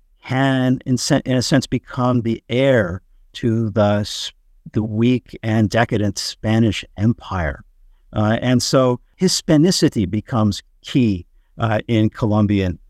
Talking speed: 110 wpm